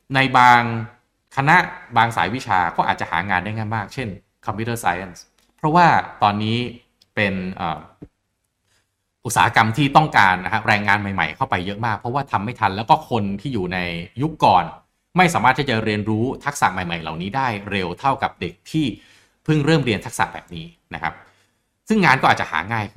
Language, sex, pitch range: Thai, male, 100-145 Hz